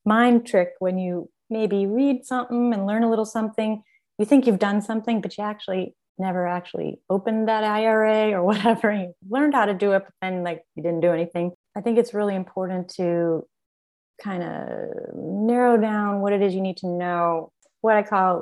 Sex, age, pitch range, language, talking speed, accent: female, 30-49, 175-215 Hz, English, 195 wpm, American